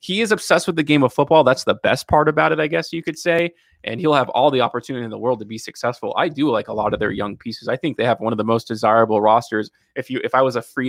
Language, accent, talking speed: English, American, 315 wpm